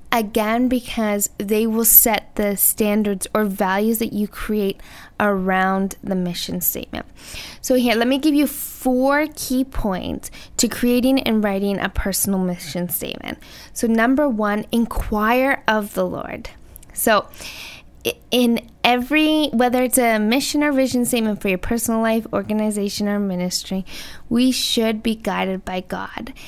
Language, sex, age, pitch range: English, female, 10-29, 205-240 Hz